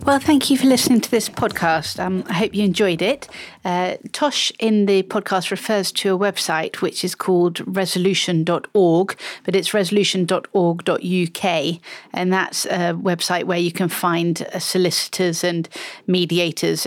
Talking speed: 150 wpm